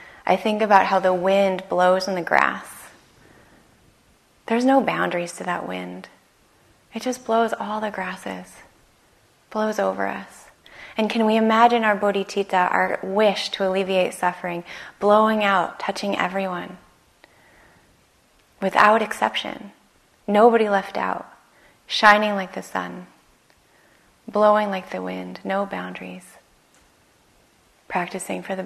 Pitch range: 175-220 Hz